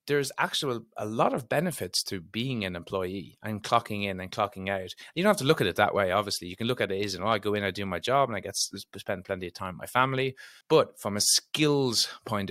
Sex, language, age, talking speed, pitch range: male, English, 30-49, 270 wpm, 95-115 Hz